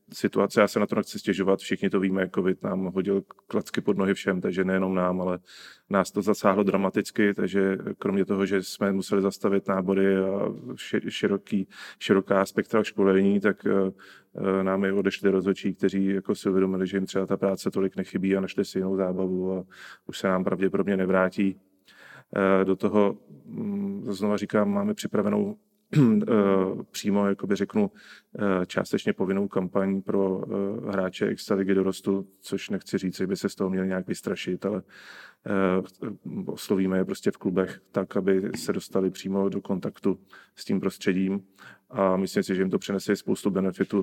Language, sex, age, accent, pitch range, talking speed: English, male, 30-49, Czech, 95-100 Hz, 160 wpm